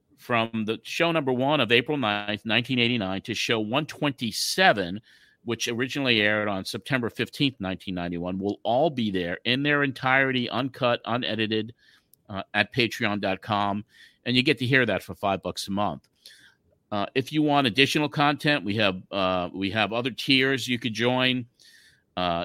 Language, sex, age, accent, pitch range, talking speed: English, male, 50-69, American, 110-130 Hz, 160 wpm